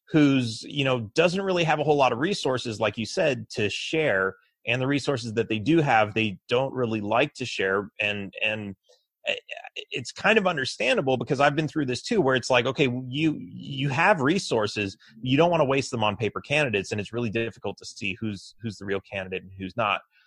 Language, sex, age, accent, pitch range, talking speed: English, male, 30-49, American, 105-145 Hz, 215 wpm